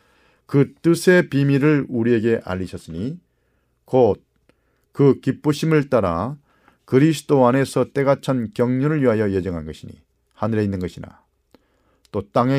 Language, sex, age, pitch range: Korean, male, 40-59, 110-135 Hz